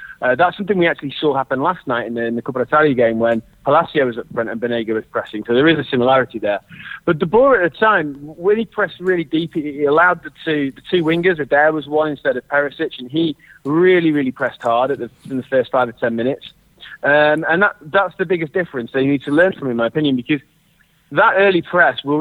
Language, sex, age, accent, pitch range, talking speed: English, male, 30-49, British, 130-170 Hz, 250 wpm